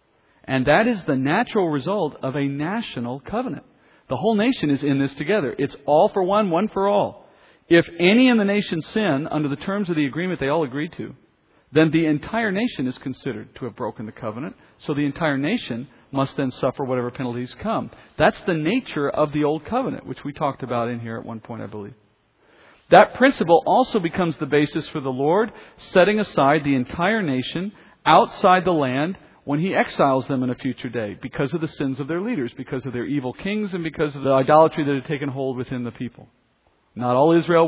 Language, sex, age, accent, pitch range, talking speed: English, male, 40-59, American, 135-170 Hz, 210 wpm